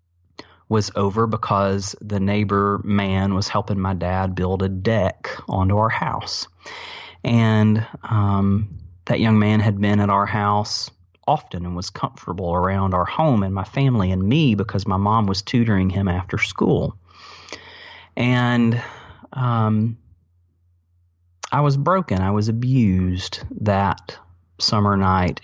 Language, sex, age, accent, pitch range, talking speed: English, male, 30-49, American, 95-110 Hz, 135 wpm